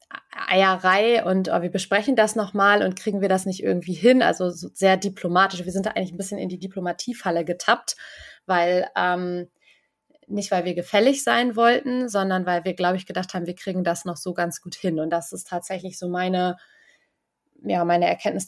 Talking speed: 195 wpm